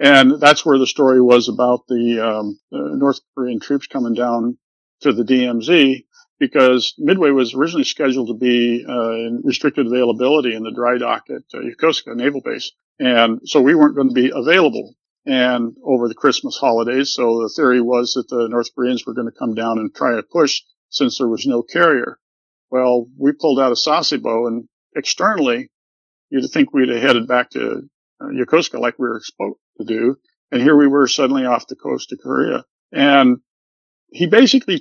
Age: 50-69